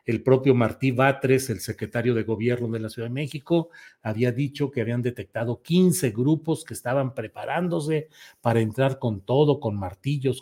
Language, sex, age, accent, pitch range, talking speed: Spanish, male, 40-59, Mexican, 120-155 Hz, 165 wpm